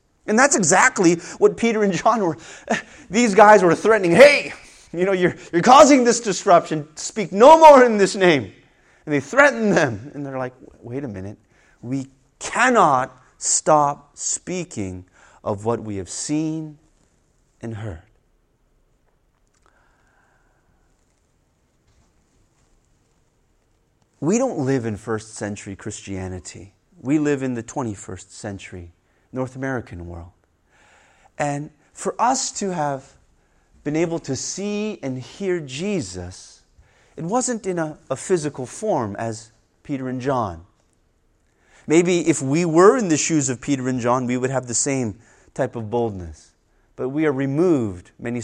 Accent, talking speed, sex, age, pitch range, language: American, 140 wpm, male, 30-49, 110-180 Hz, English